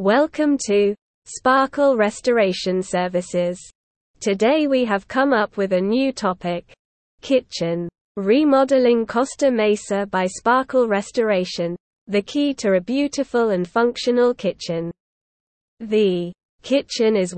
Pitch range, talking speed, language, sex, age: 190-250 Hz, 110 wpm, English, female, 20-39